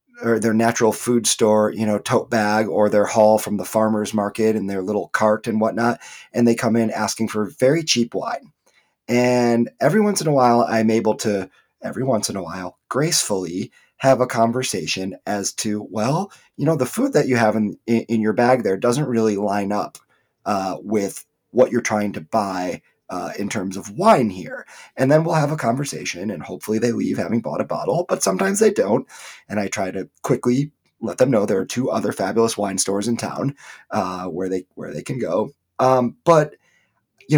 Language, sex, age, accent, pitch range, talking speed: English, male, 30-49, American, 105-130 Hz, 200 wpm